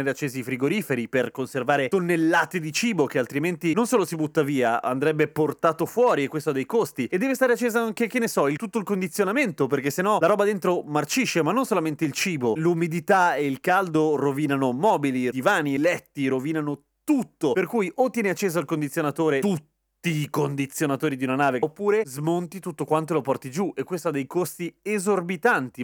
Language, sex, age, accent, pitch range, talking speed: Italian, male, 30-49, native, 145-205 Hz, 195 wpm